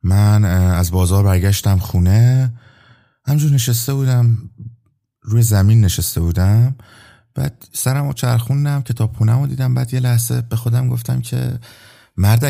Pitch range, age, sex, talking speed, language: 90-120 Hz, 30-49, male, 130 wpm, Persian